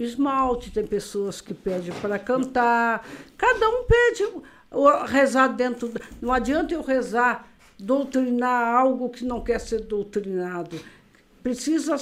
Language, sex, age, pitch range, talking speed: Portuguese, female, 60-79, 235-300 Hz, 125 wpm